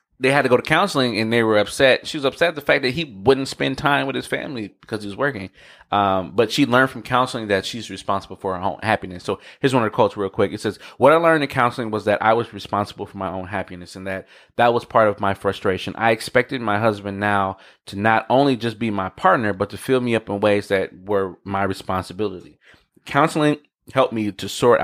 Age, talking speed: 20-39, 245 wpm